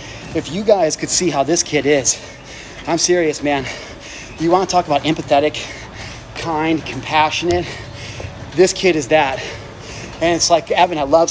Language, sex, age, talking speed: English, male, 30-49, 160 wpm